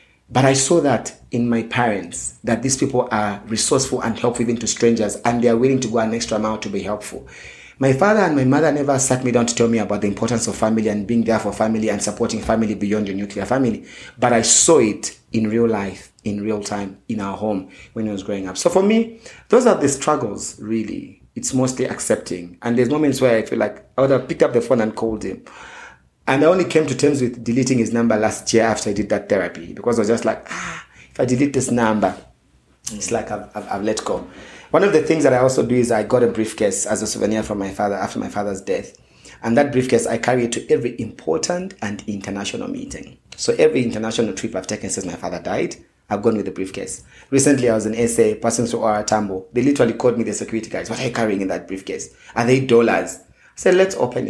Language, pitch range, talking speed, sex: English, 105-130 Hz, 240 wpm, male